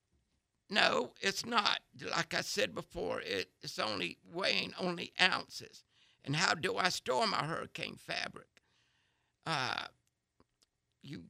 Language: English